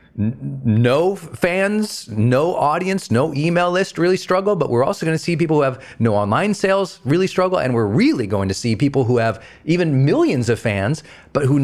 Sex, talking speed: male, 195 wpm